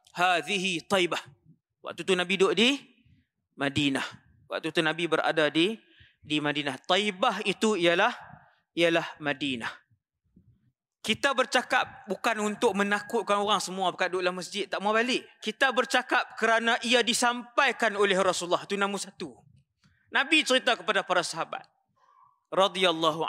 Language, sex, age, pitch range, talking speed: Malay, male, 20-39, 180-255 Hz, 125 wpm